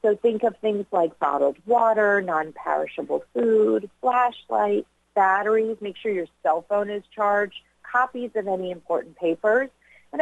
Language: English